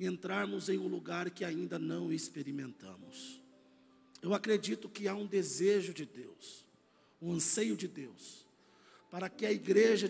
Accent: Brazilian